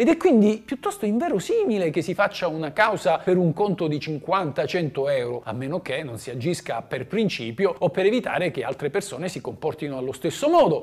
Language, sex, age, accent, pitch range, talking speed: Italian, male, 50-69, native, 160-230 Hz, 195 wpm